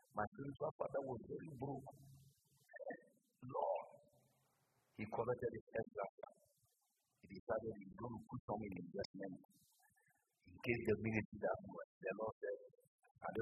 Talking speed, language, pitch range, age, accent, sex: 135 wpm, English, 125-195 Hz, 50-69, American, male